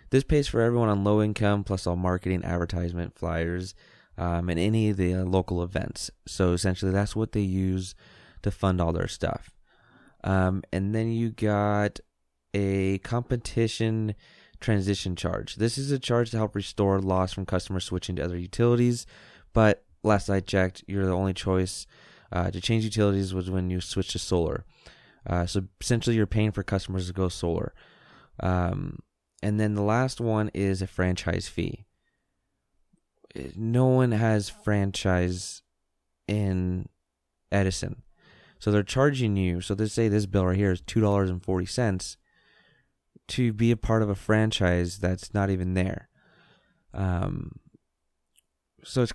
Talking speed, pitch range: 150 wpm, 90-110 Hz